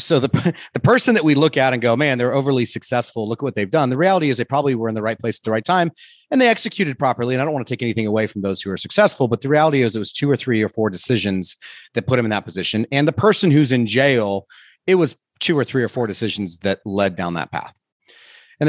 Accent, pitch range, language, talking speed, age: American, 110-150 Hz, English, 285 wpm, 30-49